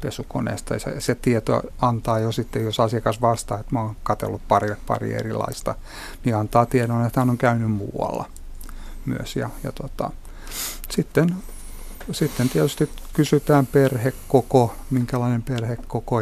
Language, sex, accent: Finnish, male, native